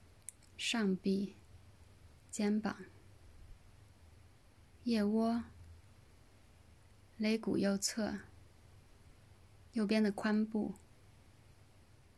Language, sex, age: Chinese, female, 20-39